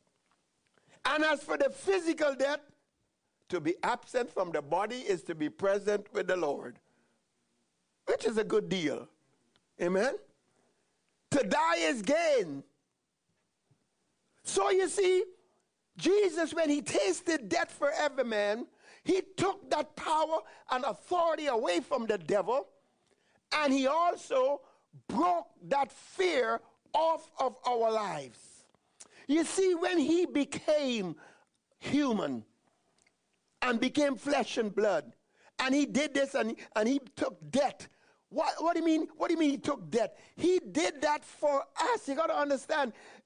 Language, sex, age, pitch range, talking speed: English, male, 50-69, 250-330 Hz, 140 wpm